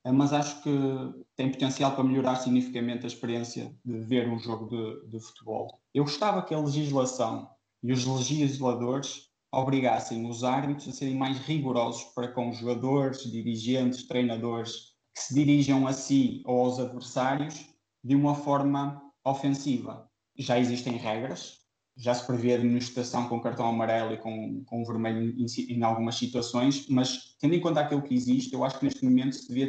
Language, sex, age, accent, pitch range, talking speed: Portuguese, male, 20-39, Brazilian, 120-140 Hz, 170 wpm